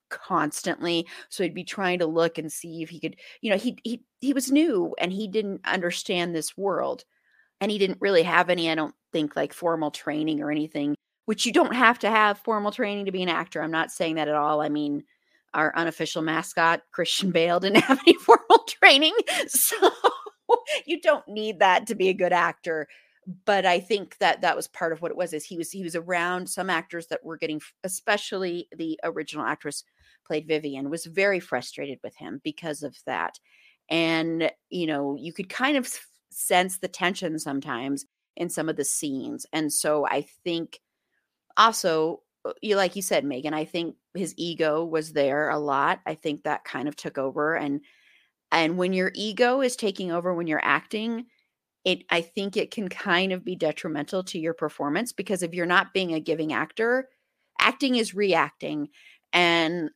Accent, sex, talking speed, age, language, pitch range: American, female, 190 wpm, 30-49, English, 160-210 Hz